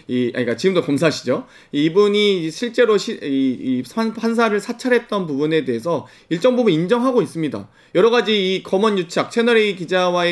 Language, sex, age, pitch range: Korean, male, 30-49, 165-225 Hz